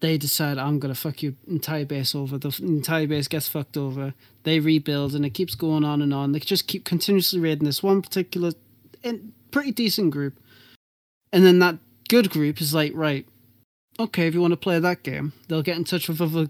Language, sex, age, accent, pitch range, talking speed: English, male, 20-39, British, 145-175 Hz, 210 wpm